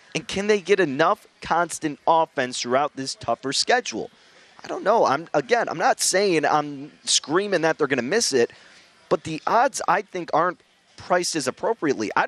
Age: 30-49